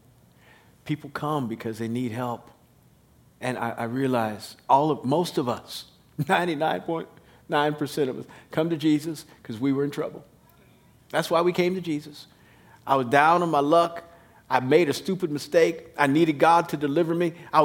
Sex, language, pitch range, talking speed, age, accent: male, English, 155-215 Hz, 170 wpm, 50-69, American